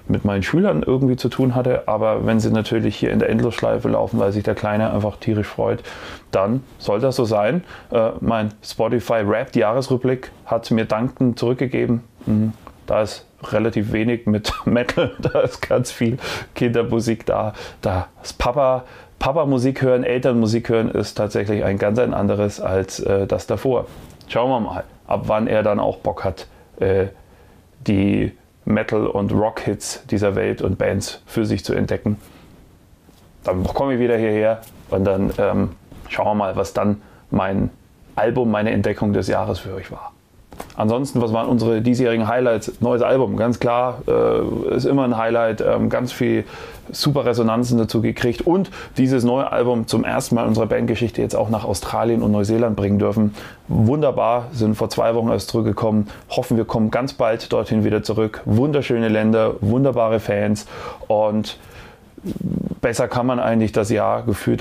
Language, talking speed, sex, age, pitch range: German, 165 wpm, male, 30-49, 105-120 Hz